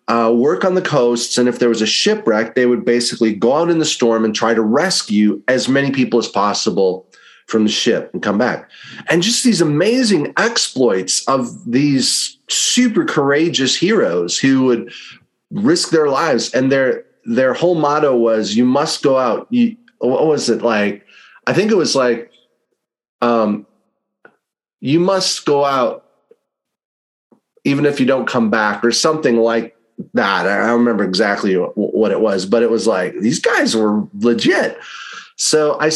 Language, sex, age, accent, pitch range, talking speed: English, male, 30-49, American, 115-155 Hz, 170 wpm